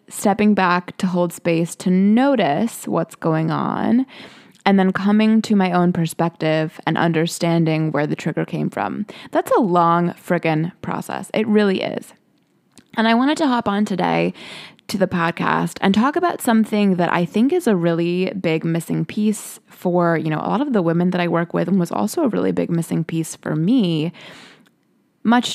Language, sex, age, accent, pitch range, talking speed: English, female, 20-39, American, 170-210 Hz, 185 wpm